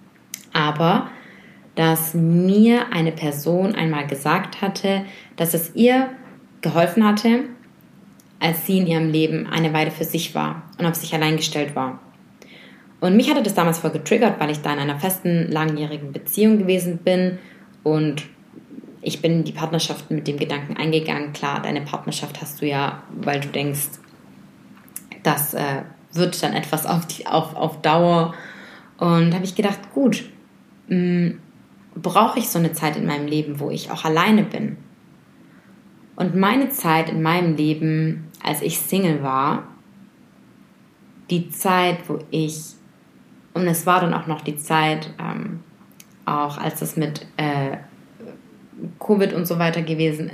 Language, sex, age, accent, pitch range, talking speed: English, female, 20-39, German, 155-190 Hz, 150 wpm